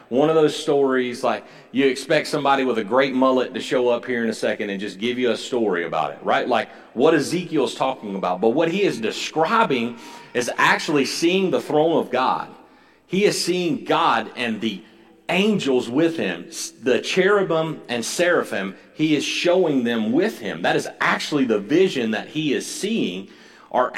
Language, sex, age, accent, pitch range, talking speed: English, male, 40-59, American, 130-205 Hz, 185 wpm